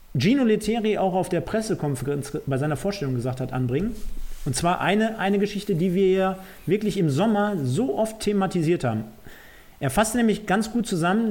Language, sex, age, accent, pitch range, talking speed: German, male, 40-59, German, 150-200 Hz, 175 wpm